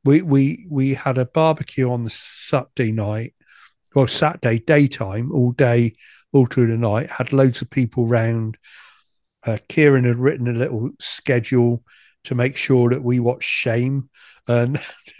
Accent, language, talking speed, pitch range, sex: British, English, 160 wpm, 125-150 Hz, male